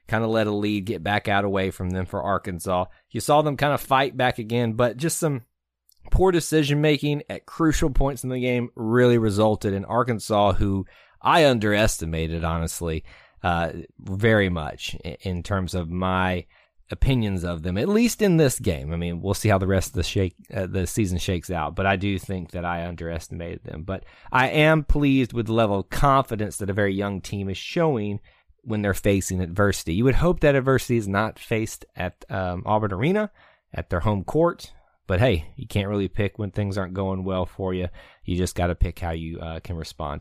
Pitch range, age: 90-120 Hz, 30-49